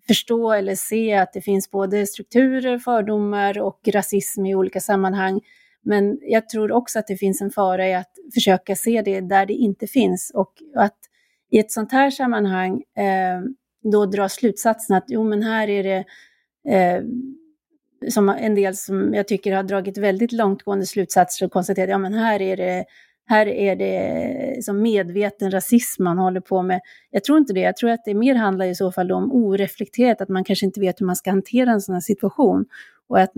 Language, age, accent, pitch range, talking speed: Swedish, 30-49, native, 190-225 Hz, 195 wpm